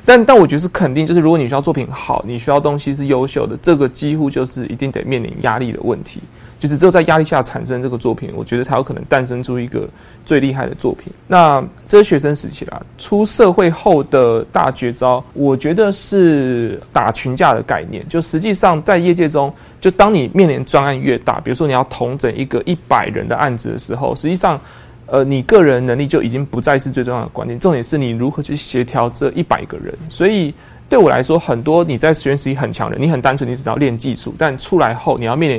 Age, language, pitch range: 20-39, Chinese, 125-165 Hz